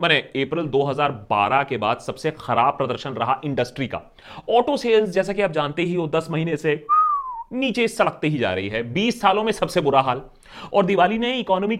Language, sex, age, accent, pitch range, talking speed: Hindi, male, 30-49, native, 140-220 Hz, 190 wpm